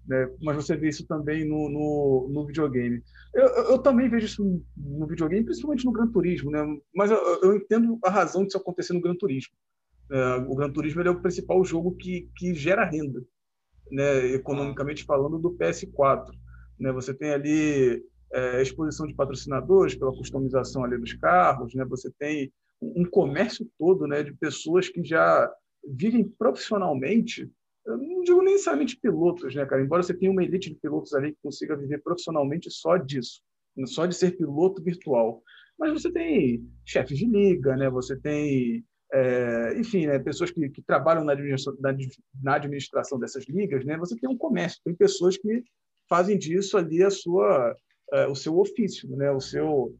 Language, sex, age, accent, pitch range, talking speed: Portuguese, male, 40-59, Brazilian, 140-200 Hz, 180 wpm